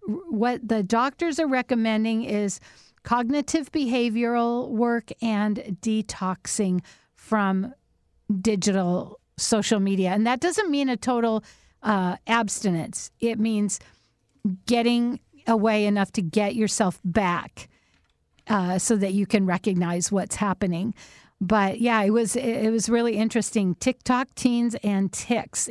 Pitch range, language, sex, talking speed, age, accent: 200-235 Hz, English, female, 120 wpm, 50-69, American